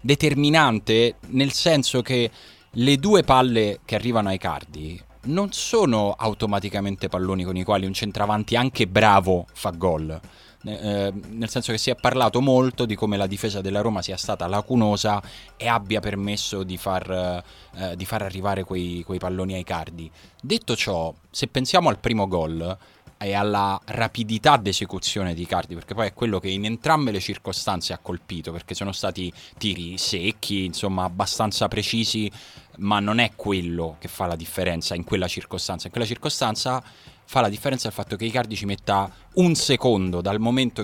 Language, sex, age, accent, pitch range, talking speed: Italian, male, 20-39, native, 95-120 Hz, 165 wpm